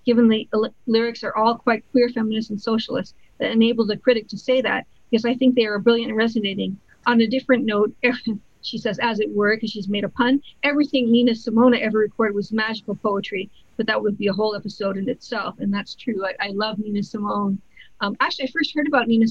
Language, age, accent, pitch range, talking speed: English, 50-69, American, 215-240 Hz, 225 wpm